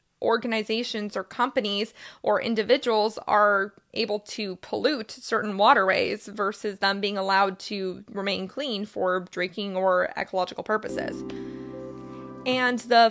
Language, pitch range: English, 200-250 Hz